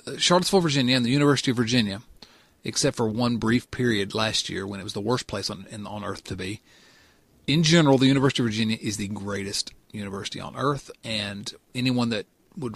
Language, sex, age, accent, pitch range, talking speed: English, male, 40-59, American, 110-135 Hz, 200 wpm